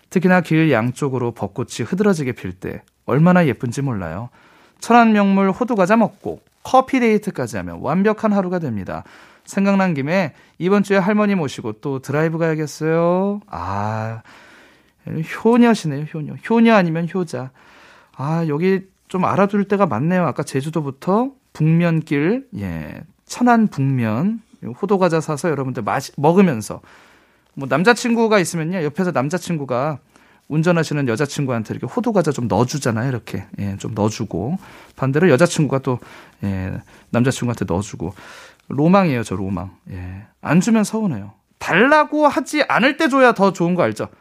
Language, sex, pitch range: Korean, male, 120-195 Hz